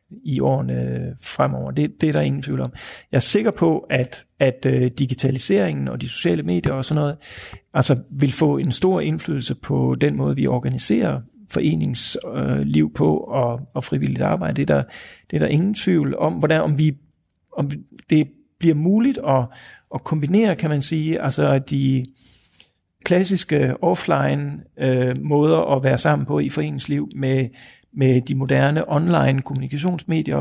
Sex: male